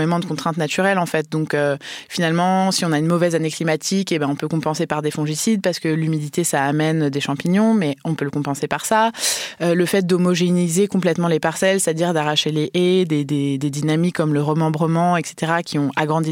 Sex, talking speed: female, 215 wpm